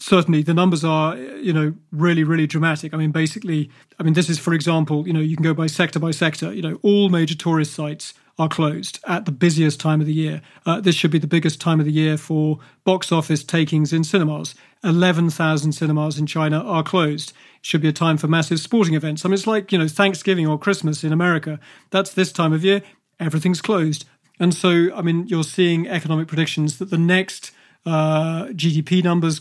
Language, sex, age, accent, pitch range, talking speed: English, male, 40-59, British, 155-175 Hz, 210 wpm